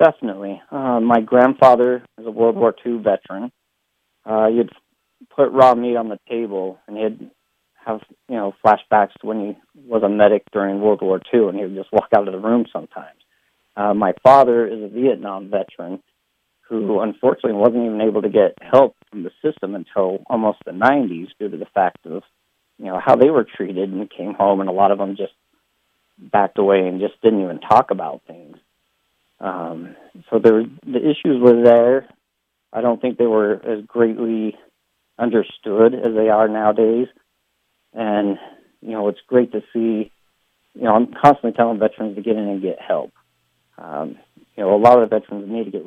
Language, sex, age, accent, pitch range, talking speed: English, male, 40-59, American, 105-120 Hz, 185 wpm